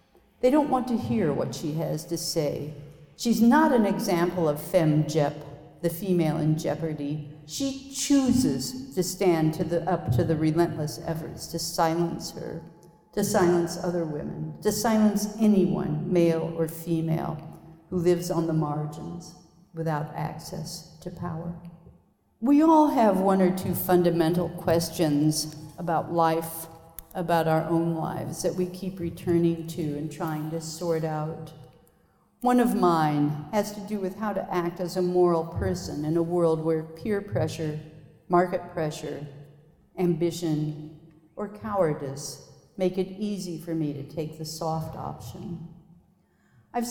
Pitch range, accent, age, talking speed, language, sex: 155-180 Hz, American, 50-69, 145 wpm, English, female